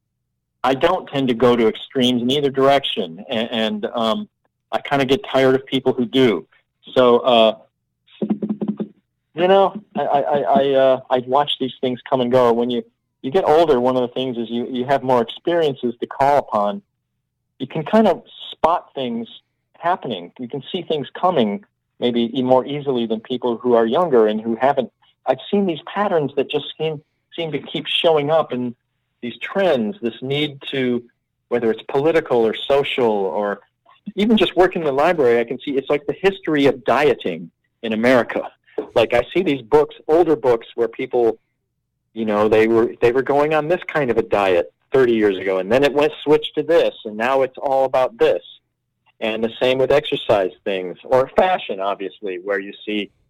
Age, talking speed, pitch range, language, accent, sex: 40-59, 190 wpm, 120-160 Hz, English, American, male